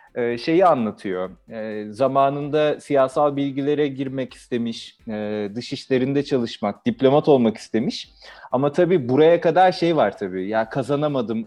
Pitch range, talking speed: 115-140 Hz, 110 wpm